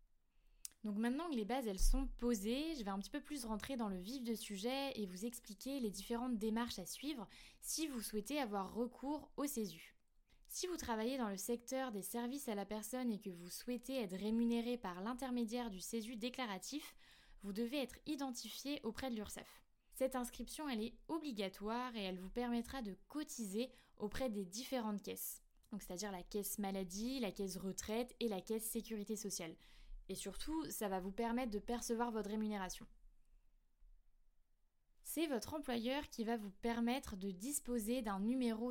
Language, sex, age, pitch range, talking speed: French, female, 10-29, 210-260 Hz, 175 wpm